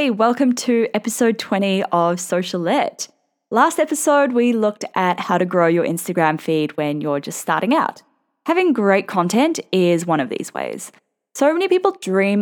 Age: 10-29